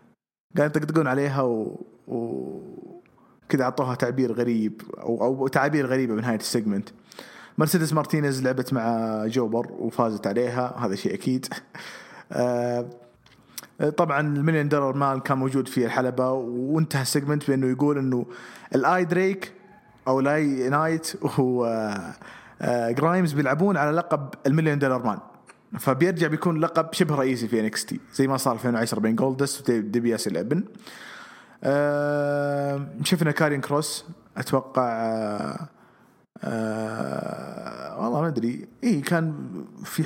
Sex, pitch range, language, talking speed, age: male, 120-150 Hz, English, 115 wpm, 30-49